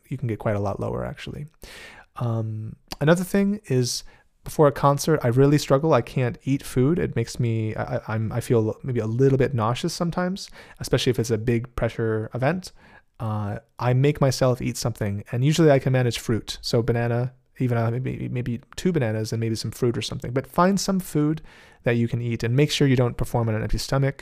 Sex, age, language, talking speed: male, 30-49, English, 210 wpm